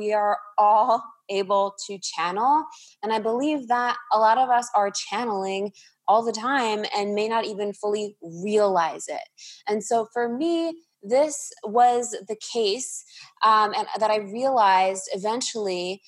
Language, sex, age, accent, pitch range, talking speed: English, female, 20-39, American, 185-225 Hz, 145 wpm